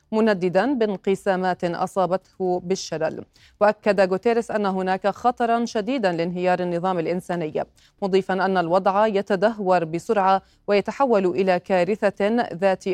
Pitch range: 175-200 Hz